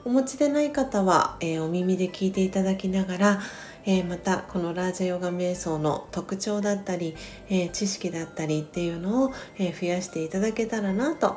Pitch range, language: 170-215 Hz, Japanese